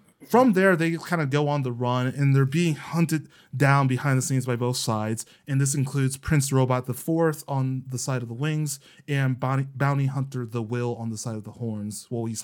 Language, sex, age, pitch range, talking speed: English, male, 20-39, 125-150 Hz, 220 wpm